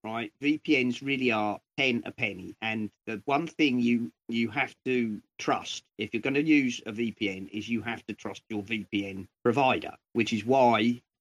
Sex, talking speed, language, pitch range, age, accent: male, 180 wpm, English, 110-155 Hz, 40-59, British